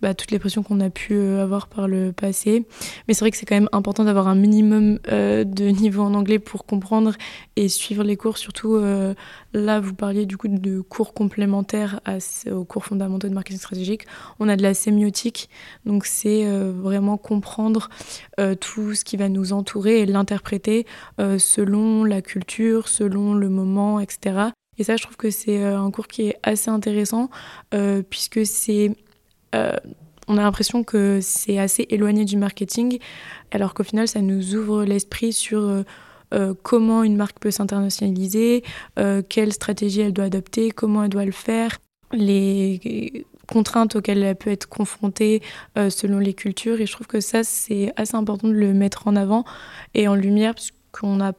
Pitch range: 200-220 Hz